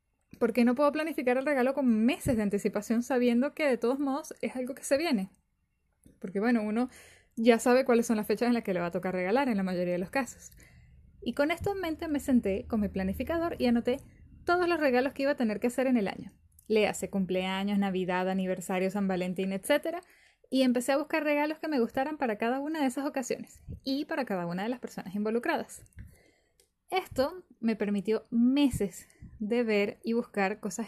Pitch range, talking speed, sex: 210-275 Hz, 205 wpm, female